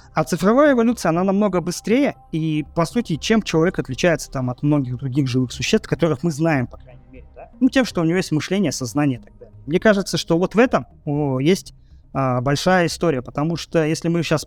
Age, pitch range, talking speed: 20-39, 135-185 Hz, 210 wpm